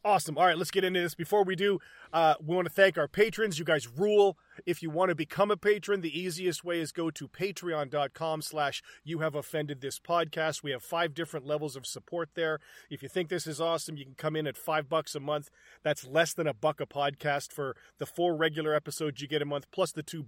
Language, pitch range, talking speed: English, 145-170 Hz, 245 wpm